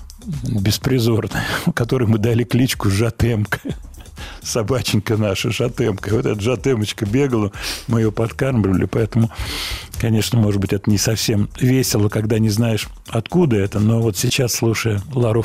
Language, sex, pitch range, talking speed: Russian, male, 110-140 Hz, 130 wpm